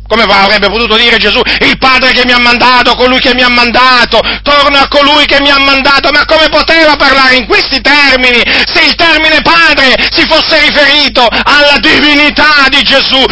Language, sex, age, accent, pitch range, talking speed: Italian, male, 40-59, native, 220-290 Hz, 185 wpm